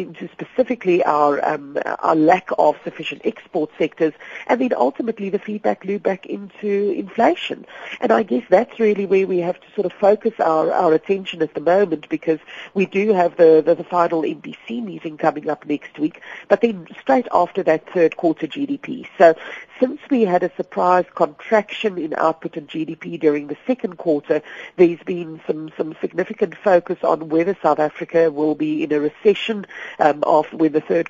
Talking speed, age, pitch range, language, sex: 180 wpm, 50-69, 160-205 Hz, English, female